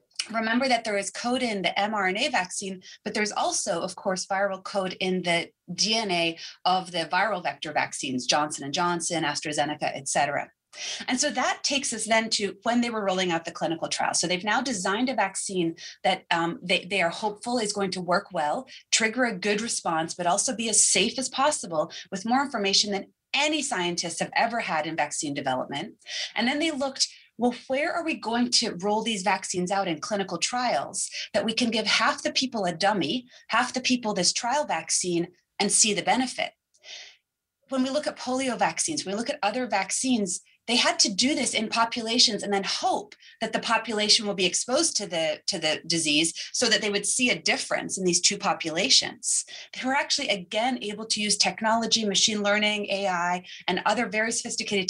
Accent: American